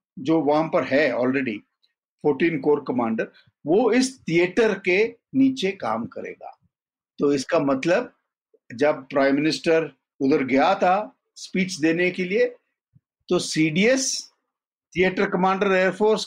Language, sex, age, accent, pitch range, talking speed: Hindi, male, 50-69, native, 155-220 Hz, 120 wpm